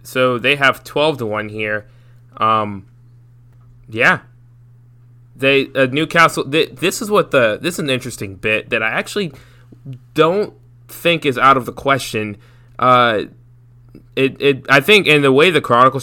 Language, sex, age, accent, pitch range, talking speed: English, male, 20-39, American, 110-125 Hz, 155 wpm